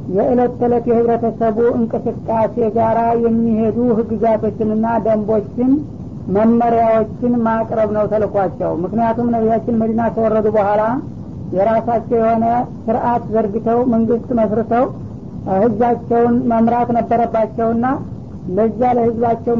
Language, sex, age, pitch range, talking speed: English, female, 60-79, 220-235 Hz, 45 wpm